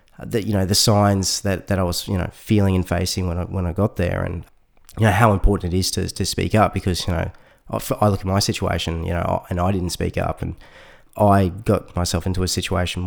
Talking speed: 245 wpm